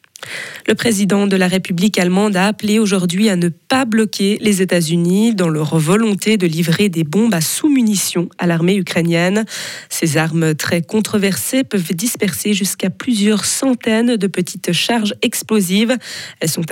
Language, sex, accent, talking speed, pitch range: French, female, French, 155 wpm, 175-215 Hz